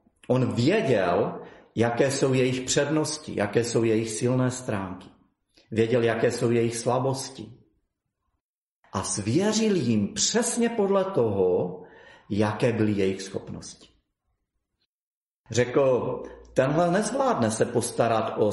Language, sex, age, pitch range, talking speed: Czech, male, 40-59, 110-150 Hz, 105 wpm